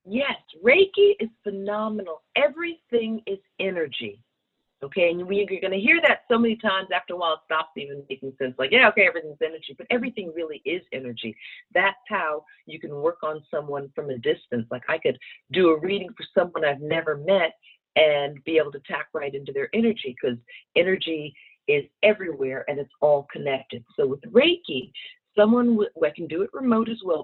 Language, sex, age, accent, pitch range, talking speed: English, female, 50-69, American, 165-240 Hz, 185 wpm